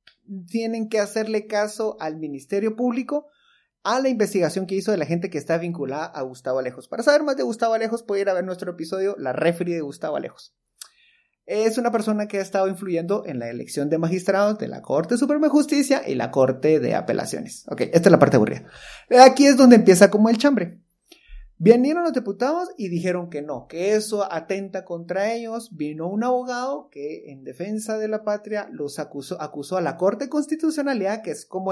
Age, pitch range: 30-49, 165-230 Hz